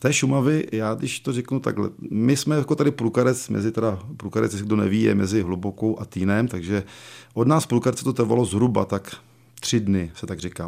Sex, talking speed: male, 200 wpm